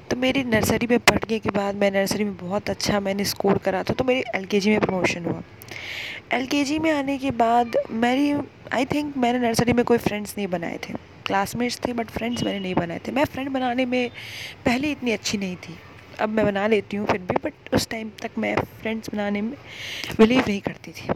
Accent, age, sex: native, 20-39, female